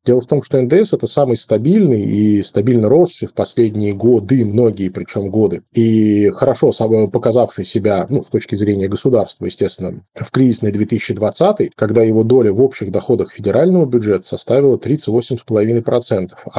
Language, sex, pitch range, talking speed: Russian, male, 105-120 Hz, 150 wpm